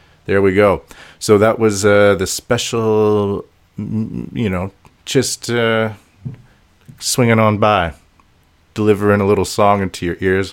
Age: 30-49